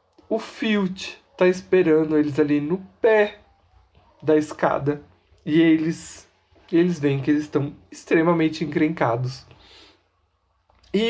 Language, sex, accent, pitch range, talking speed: Portuguese, male, Brazilian, 125-185 Hz, 110 wpm